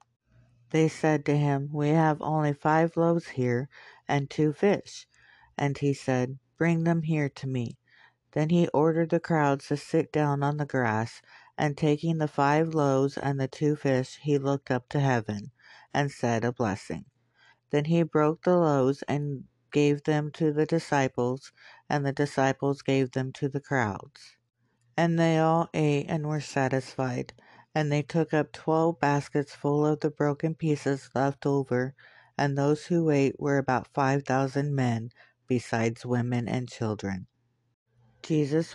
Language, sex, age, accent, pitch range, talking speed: English, female, 60-79, American, 125-150 Hz, 160 wpm